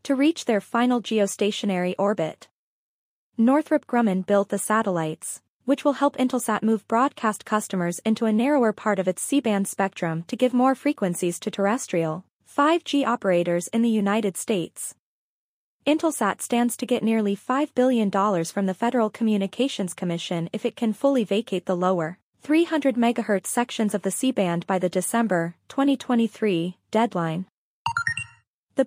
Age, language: 20-39, English